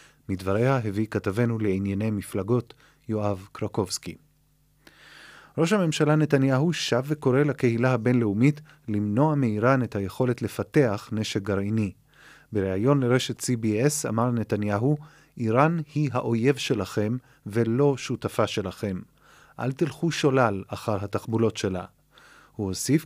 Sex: male